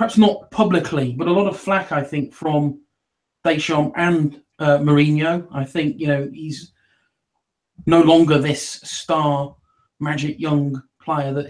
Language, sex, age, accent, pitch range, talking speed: English, male, 30-49, British, 135-175 Hz, 145 wpm